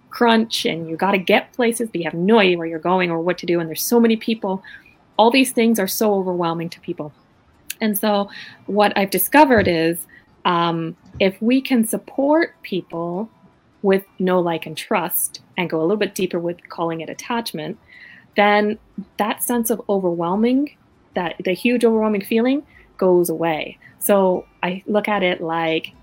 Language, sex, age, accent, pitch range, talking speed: English, female, 20-39, American, 170-215 Hz, 175 wpm